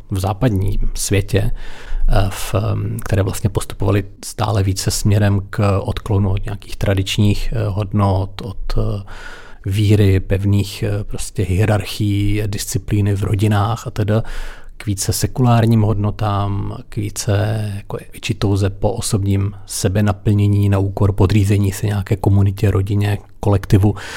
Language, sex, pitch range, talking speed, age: Czech, male, 100-110 Hz, 115 wpm, 40-59